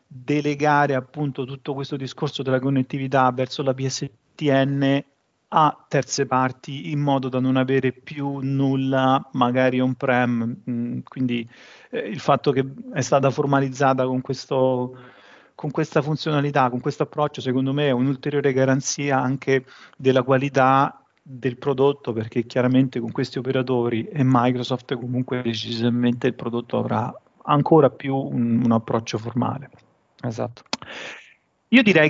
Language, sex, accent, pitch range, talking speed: Italian, male, native, 130-150 Hz, 130 wpm